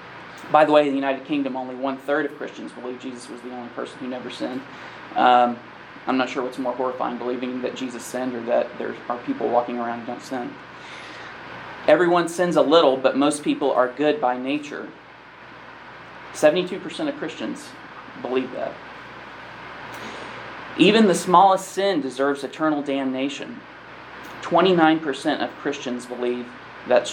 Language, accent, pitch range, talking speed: English, American, 125-150 Hz, 155 wpm